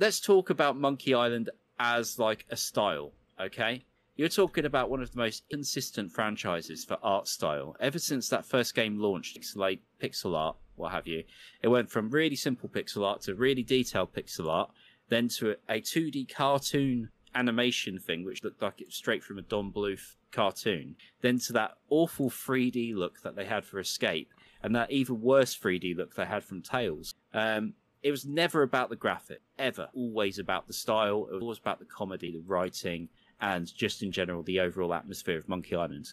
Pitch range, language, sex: 95-130 Hz, English, male